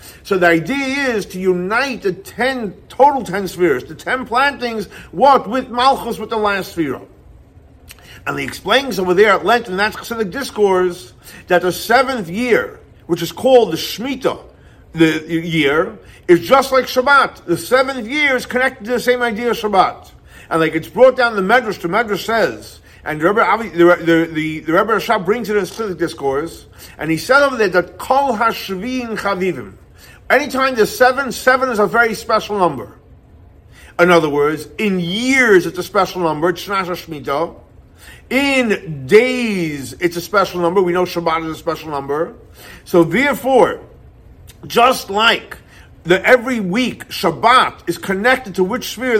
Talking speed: 165 wpm